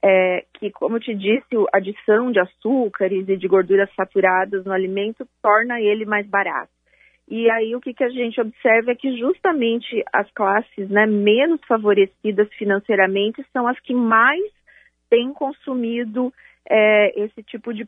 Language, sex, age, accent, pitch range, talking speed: Portuguese, female, 30-49, Brazilian, 200-250 Hz, 155 wpm